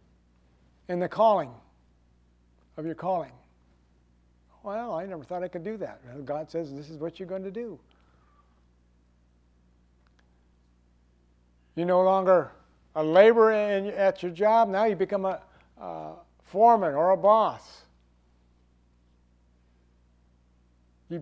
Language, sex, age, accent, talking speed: English, male, 60-79, American, 125 wpm